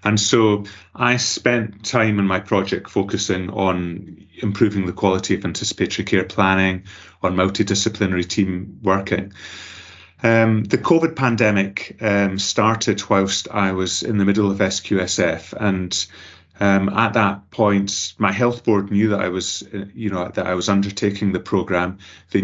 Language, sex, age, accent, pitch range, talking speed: English, male, 30-49, British, 95-110 Hz, 150 wpm